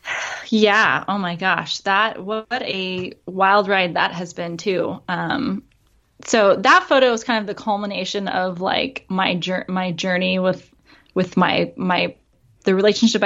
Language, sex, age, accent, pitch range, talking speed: English, female, 20-39, American, 185-240 Hz, 155 wpm